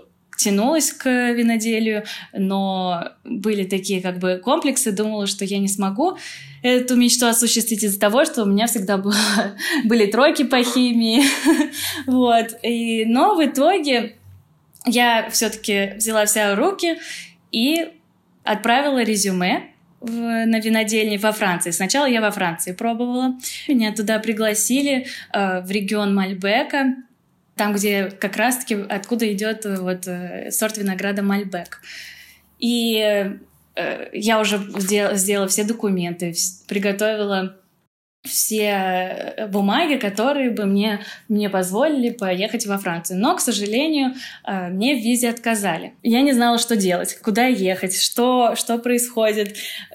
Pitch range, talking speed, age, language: 200-245 Hz, 125 wpm, 20-39, Russian